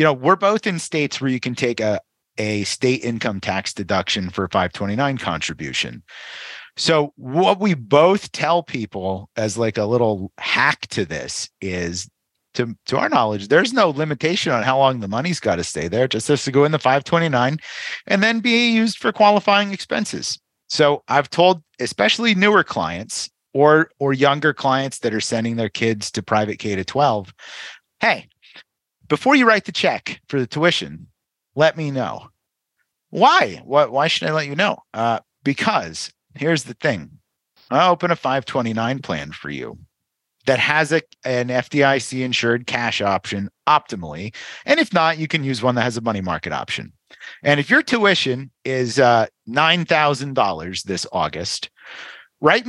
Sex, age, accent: male, 30-49, American